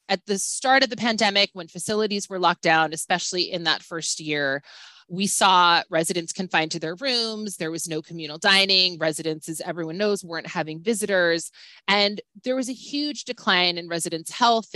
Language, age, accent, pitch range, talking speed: English, 20-39, American, 165-205 Hz, 180 wpm